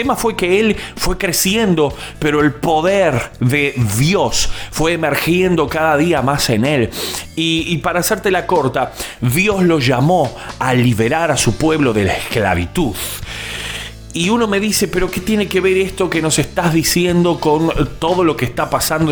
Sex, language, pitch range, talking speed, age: male, Spanish, 130-180 Hz, 175 wpm, 40-59